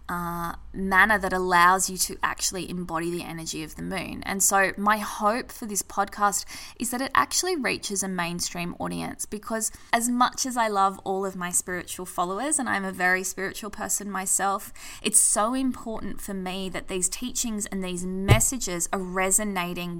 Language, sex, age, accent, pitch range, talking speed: English, female, 20-39, Australian, 170-205 Hz, 175 wpm